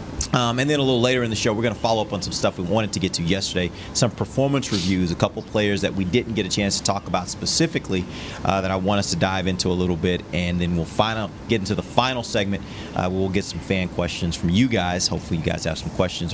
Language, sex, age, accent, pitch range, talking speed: English, male, 30-49, American, 95-120 Hz, 280 wpm